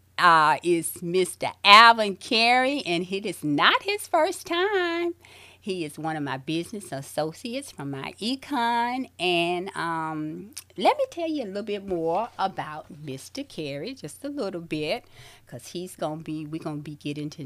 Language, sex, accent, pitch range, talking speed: English, female, American, 145-230 Hz, 165 wpm